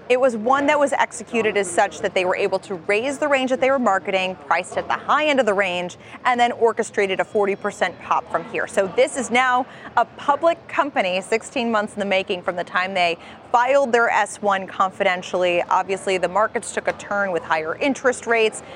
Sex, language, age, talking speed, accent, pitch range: female, English, 30-49, 210 wpm, American, 185-235 Hz